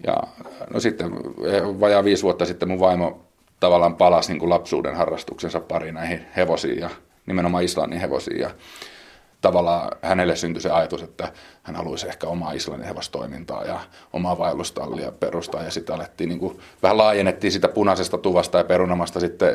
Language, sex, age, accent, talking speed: Finnish, male, 30-49, native, 155 wpm